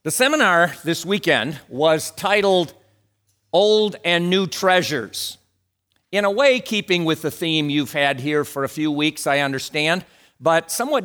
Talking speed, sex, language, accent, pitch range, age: 150 wpm, male, English, American, 150-195 Hz, 50-69